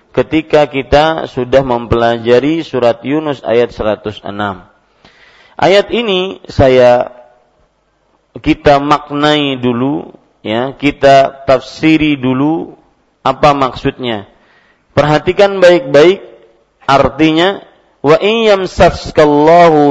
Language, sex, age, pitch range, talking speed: Malay, male, 40-59, 130-165 Hz, 80 wpm